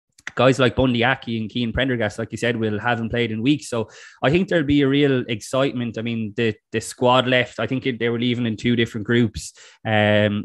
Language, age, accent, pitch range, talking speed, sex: English, 20-39, Irish, 110-125 Hz, 225 wpm, male